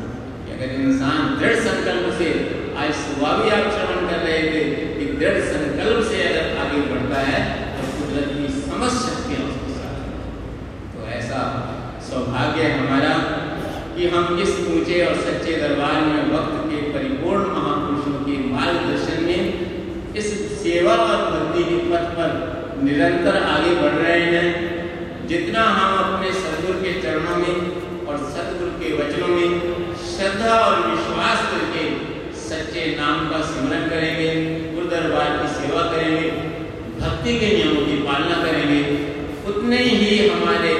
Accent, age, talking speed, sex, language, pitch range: native, 50-69, 125 wpm, male, Hindi, 135-175 Hz